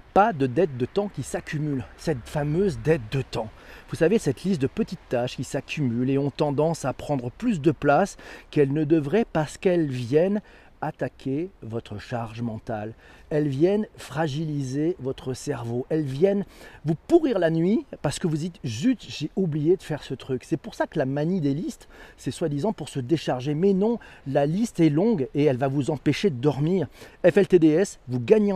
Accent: French